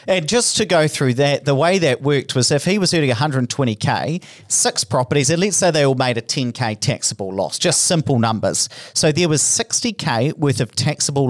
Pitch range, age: 125-170 Hz, 40-59